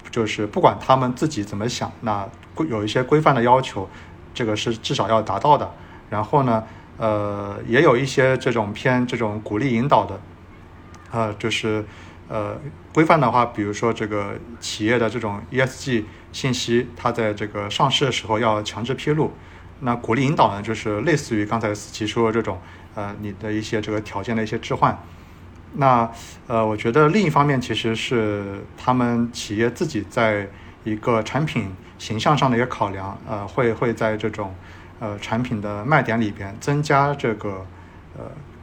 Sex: male